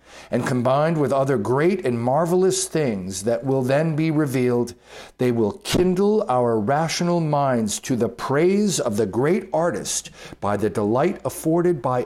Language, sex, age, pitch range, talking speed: English, male, 50-69, 100-145 Hz, 155 wpm